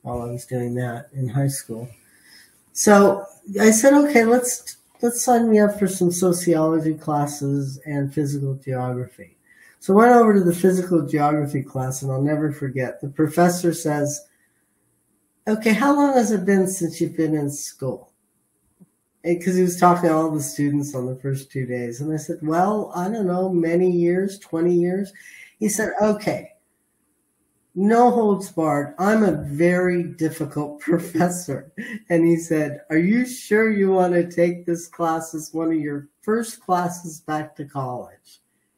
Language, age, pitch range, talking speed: English, 50-69, 145-190 Hz, 165 wpm